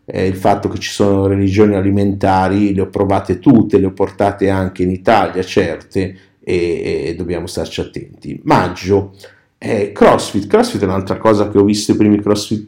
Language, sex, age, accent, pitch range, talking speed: Italian, male, 50-69, native, 100-115 Hz, 175 wpm